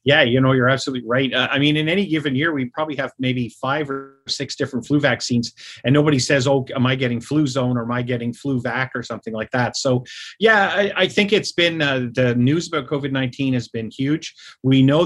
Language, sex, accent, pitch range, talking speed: English, male, American, 120-140 Hz, 235 wpm